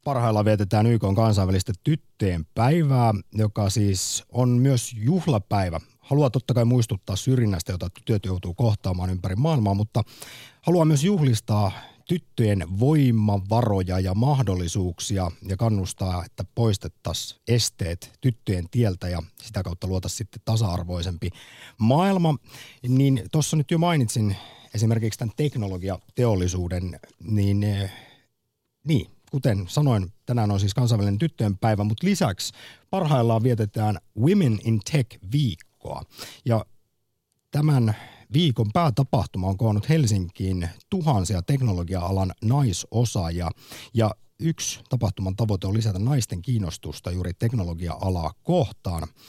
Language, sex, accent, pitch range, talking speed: Finnish, male, native, 95-130 Hz, 110 wpm